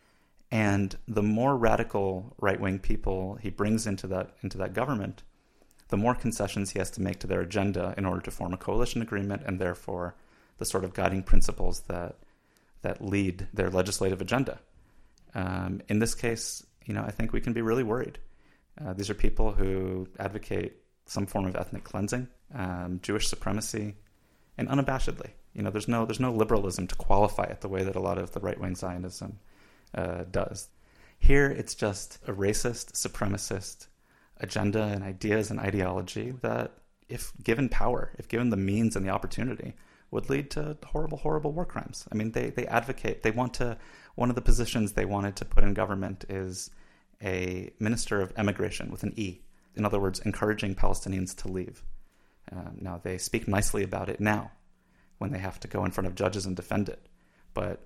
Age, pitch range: 30-49, 95-110 Hz